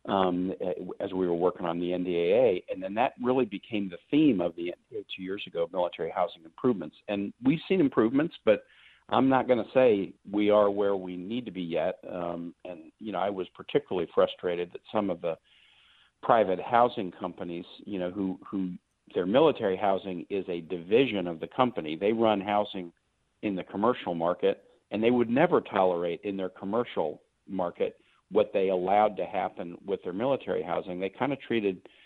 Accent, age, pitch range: American, 50-69, 95-120 Hz